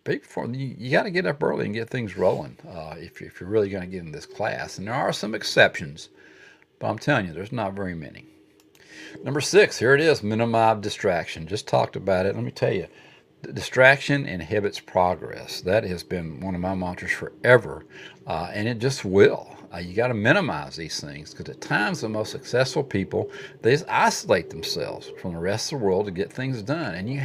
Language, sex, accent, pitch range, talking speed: English, male, American, 95-125 Hz, 215 wpm